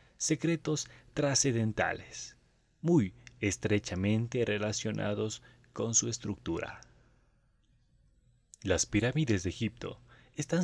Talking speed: 75 wpm